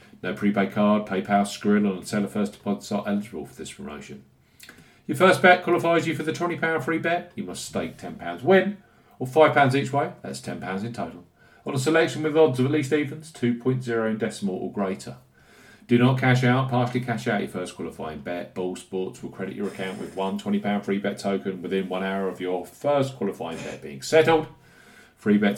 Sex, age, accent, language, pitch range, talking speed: male, 40-59, British, English, 100-155 Hz, 200 wpm